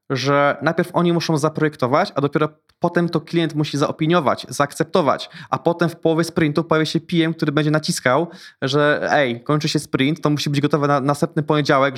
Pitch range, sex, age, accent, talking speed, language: 135-165 Hz, male, 20-39, native, 180 wpm, Polish